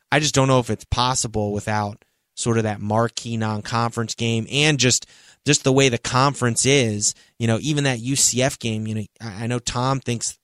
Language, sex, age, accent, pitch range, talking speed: English, male, 30-49, American, 110-130 Hz, 200 wpm